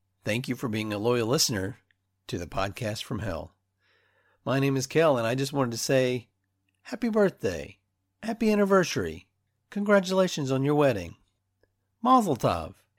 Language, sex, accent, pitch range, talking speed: English, male, American, 95-135 Hz, 150 wpm